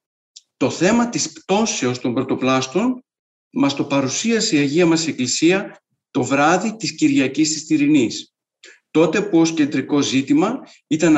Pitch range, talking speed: 140-200 Hz, 135 wpm